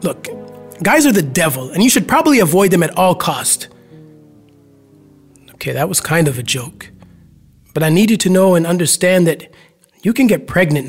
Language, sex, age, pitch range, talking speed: English, male, 30-49, 155-210 Hz, 185 wpm